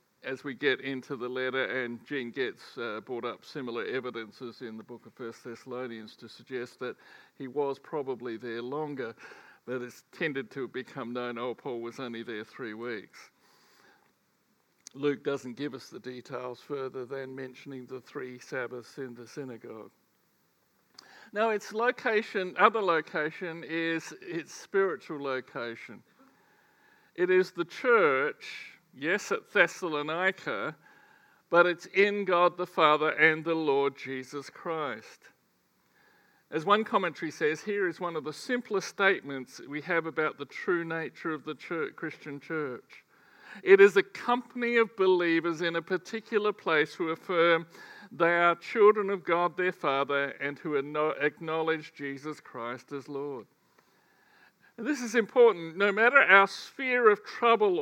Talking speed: 145 wpm